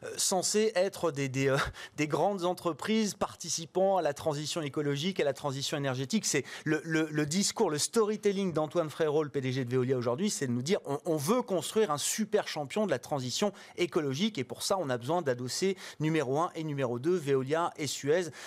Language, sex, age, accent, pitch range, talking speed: French, male, 30-49, French, 135-185 Hz, 200 wpm